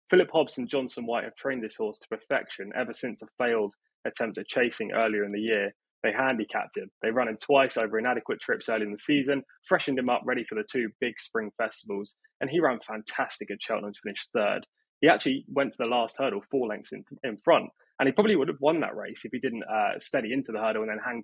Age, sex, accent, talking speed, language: 20-39, male, British, 245 wpm, English